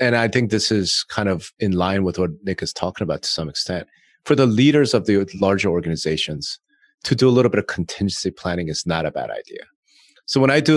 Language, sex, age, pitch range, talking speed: English, male, 30-49, 95-145 Hz, 235 wpm